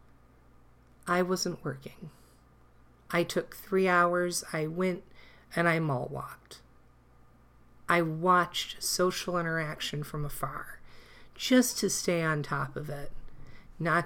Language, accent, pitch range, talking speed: English, American, 145-180 Hz, 115 wpm